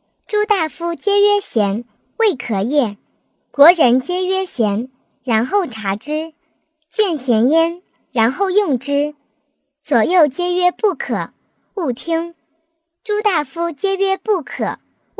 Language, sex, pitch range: Chinese, male, 270-340 Hz